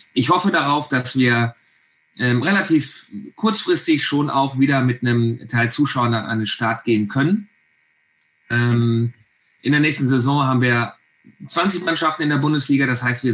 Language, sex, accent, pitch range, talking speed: German, male, German, 115-135 Hz, 160 wpm